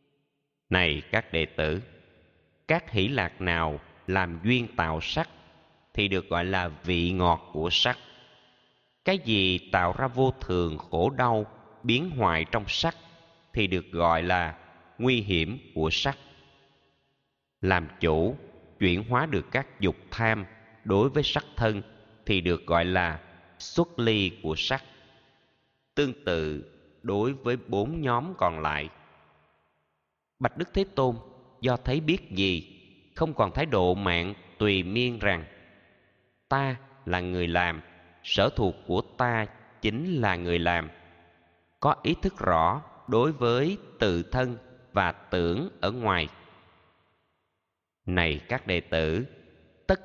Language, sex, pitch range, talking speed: Vietnamese, male, 85-125 Hz, 135 wpm